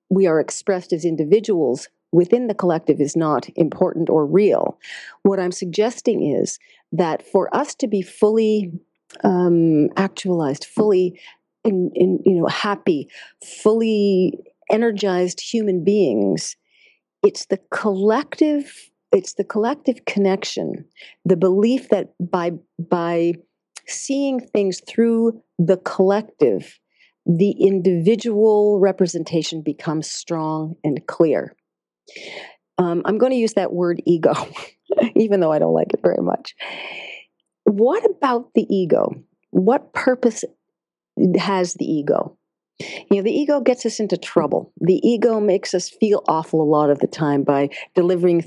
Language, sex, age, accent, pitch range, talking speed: English, female, 40-59, American, 170-215 Hz, 130 wpm